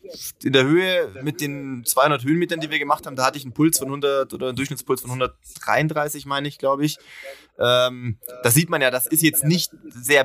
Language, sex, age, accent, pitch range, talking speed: German, male, 20-39, German, 130-160 Hz, 215 wpm